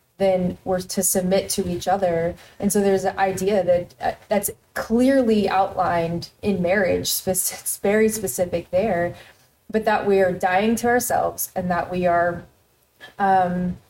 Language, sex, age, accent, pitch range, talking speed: English, female, 20-39, American, 175-205 Hz, 150 wpm